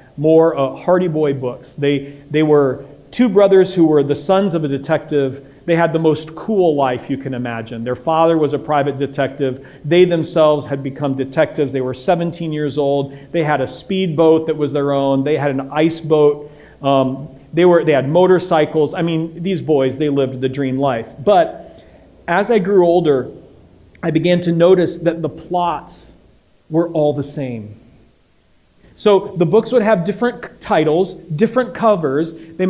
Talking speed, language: 175 wpm, English